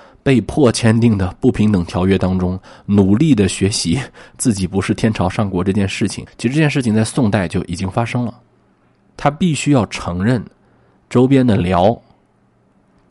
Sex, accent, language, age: male, native, Chinese, 20-39